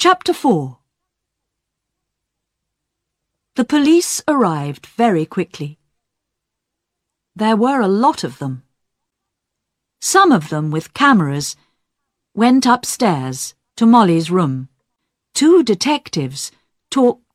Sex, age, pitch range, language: female, 50-69, 145-230 Hz, Chinese